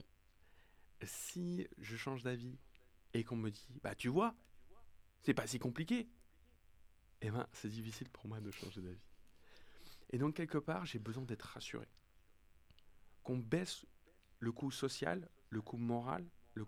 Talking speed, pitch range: 150 wpm, 90-125 Hz